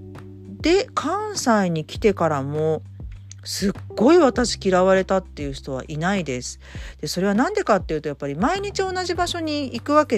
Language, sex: Japanese, female